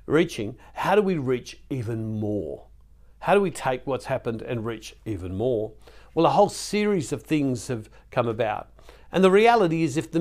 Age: 50-69